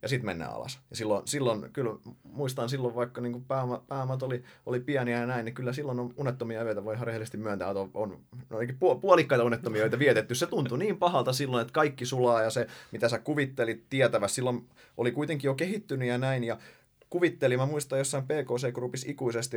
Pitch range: 120-145 Hz